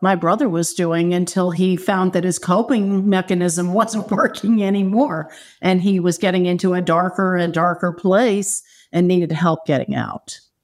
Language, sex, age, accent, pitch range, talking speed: English, female, 50-69, American, 170-210 Hz, 165 wpm